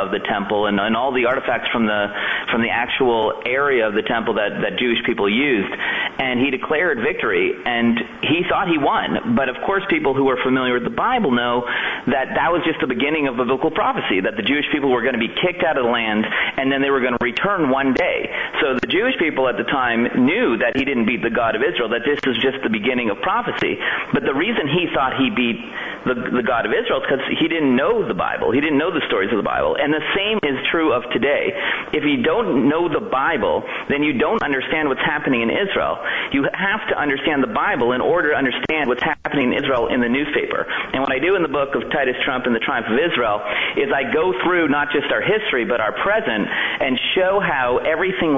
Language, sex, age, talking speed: English, male, 30-49, 240 wpm